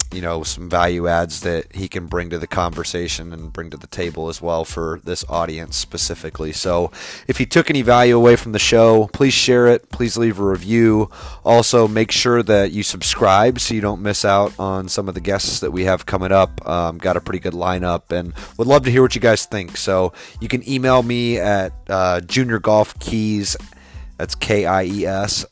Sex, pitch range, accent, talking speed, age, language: male, 85-110 Hz, American, 205 wpm, 30-49, English